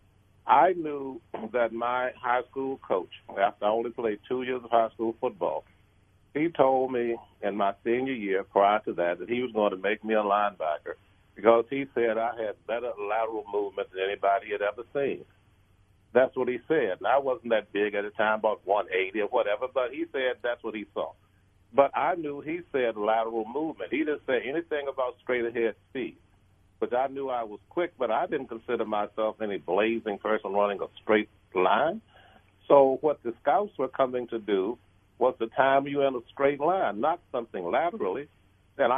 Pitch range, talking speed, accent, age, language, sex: 105-135 Hz, 190 wpm, American, 50-69, English, male